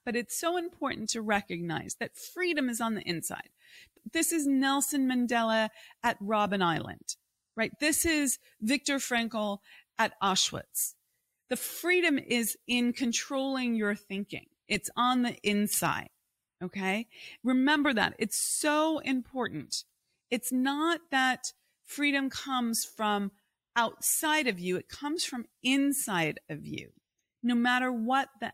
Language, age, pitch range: English, 30-49, 210-285 Hz